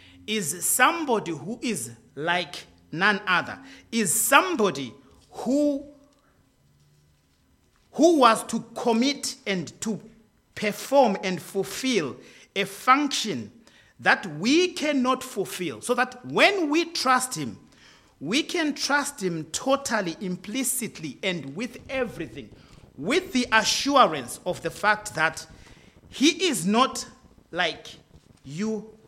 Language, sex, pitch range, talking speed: English, male, 150-255 Hz, 105 wpm